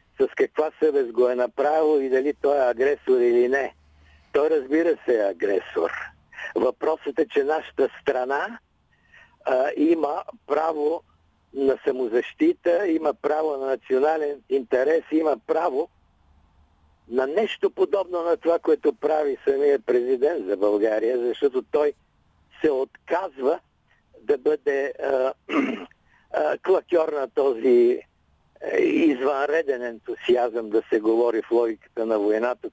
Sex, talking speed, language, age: male, 115 wpm, Bulgarian, 50-69